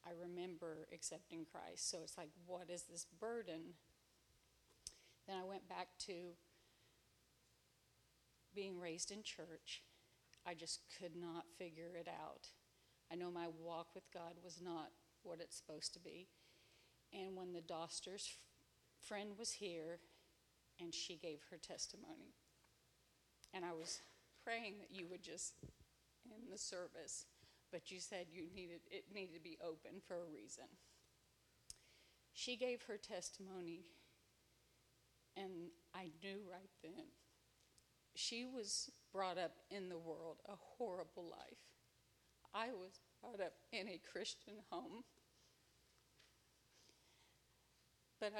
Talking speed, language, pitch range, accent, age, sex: 130 wpm, English, 170-200 Hz, American, 40-59, female